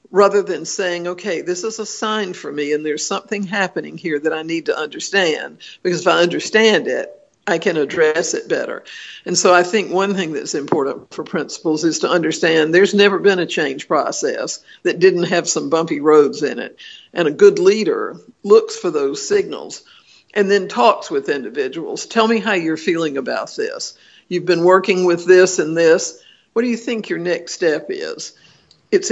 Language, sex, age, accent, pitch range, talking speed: English, female, 60-79, American, 175-245 Hz, 190 wpm